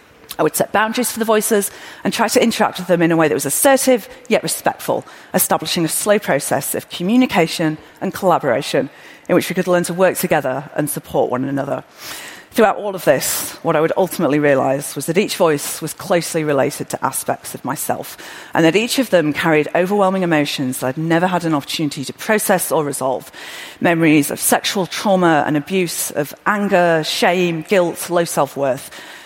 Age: 40-59